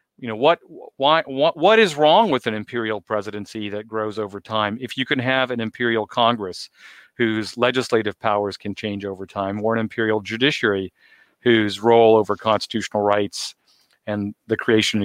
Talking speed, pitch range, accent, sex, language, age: 170 wpm, 105-125 Hz, American, male, English, 40-59